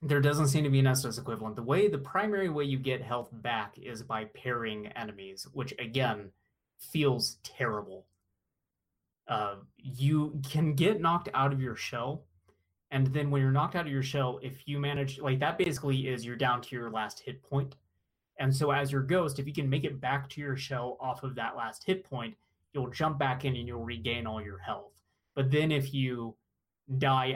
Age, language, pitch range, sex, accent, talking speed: 20-39, English, 115-145 Hz, male, American, 200 wpm